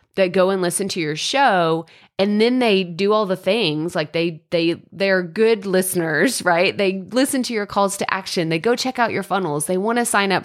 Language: English